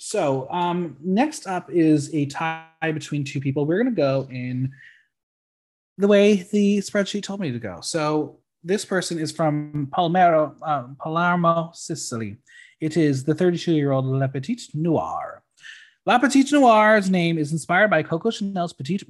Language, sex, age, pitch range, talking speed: English, male, 30-49, 135-200 Hz, 155 wpm